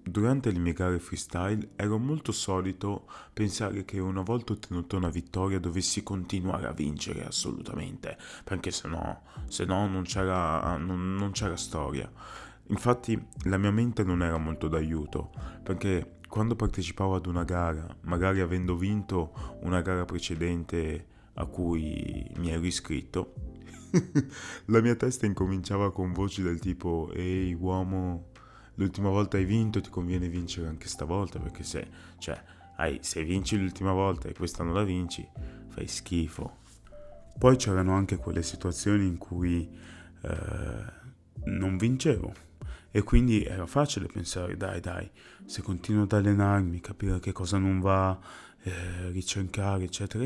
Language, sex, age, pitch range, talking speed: Italian, male, 30-49, 85-105 Hz, 140 wpm